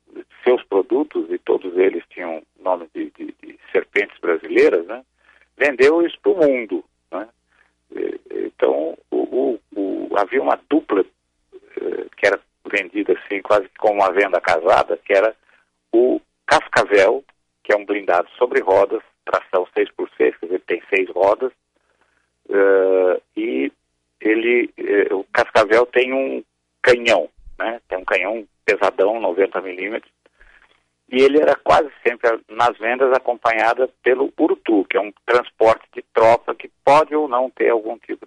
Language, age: Portuguese, 60-79